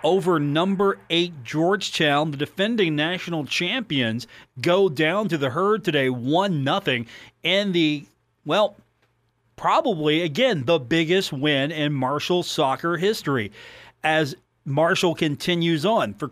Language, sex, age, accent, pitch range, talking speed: English, male, 40-59, American, 140-195 Hz, 120 wpm